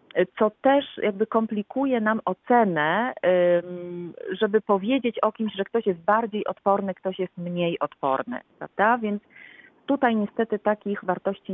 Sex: female